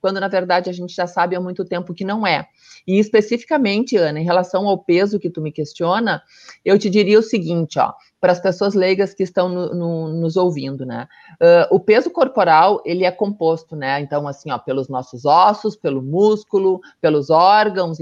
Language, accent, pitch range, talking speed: Portuguese, Brazilian, 165-210 Hz, 185 wpm